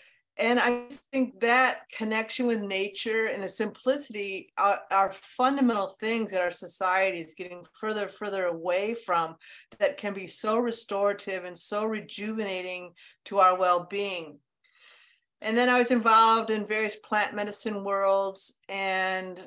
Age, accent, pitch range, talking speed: 50-69, American, 190-225 Hz, 145 wpm